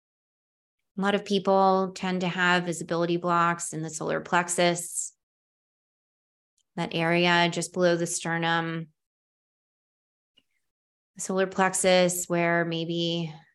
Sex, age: female, 20-39